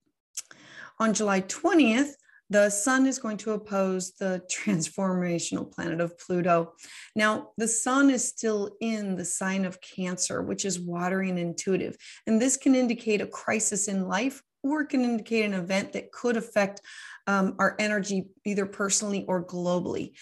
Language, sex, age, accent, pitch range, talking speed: English, female, 30-49, American, 195-245 Hz, 155 wpm